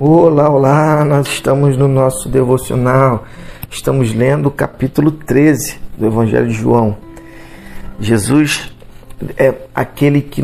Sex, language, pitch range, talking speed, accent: male, Portuguese, 115-150 Hz, 115 wpm, Brazilian